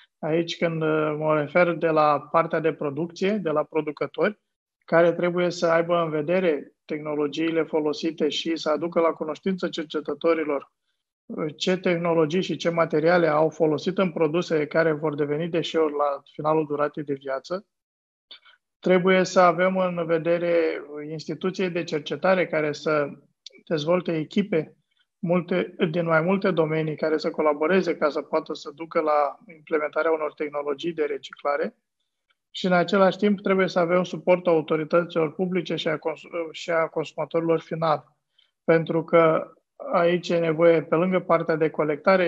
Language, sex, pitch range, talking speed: Romanian, male, 155-175 Hz, 145 wpm